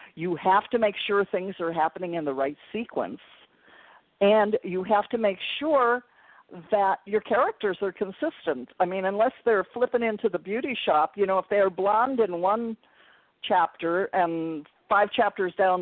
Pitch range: 175-225 Hz